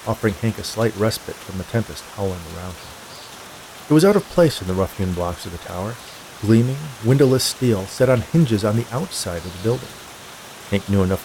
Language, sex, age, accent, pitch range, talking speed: English, male, 40-59, American, 95-120 Hz, 205 wpm